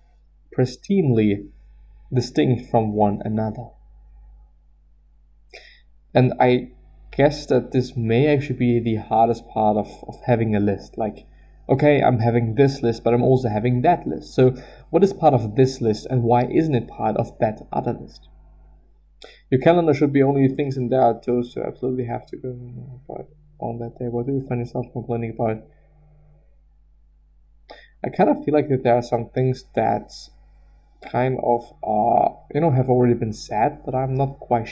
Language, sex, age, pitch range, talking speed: English, male, 20-39, 110-140 Hz, 170 wpm